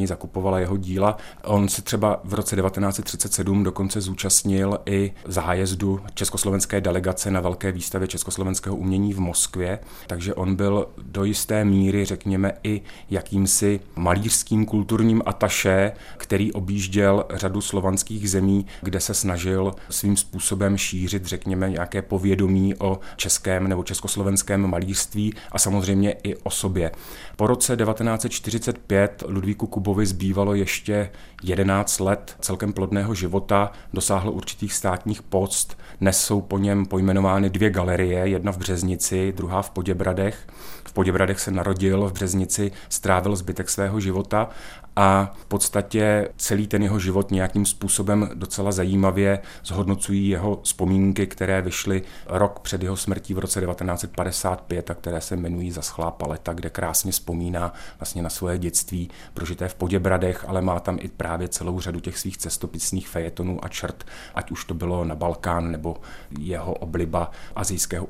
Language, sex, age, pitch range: Czech, male, 30-49, 90-100 Hz